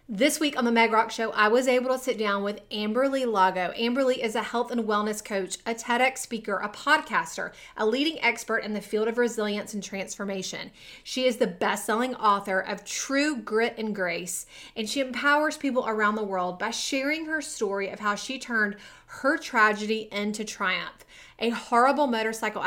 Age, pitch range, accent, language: 30-49, 205-255 Hz, American, English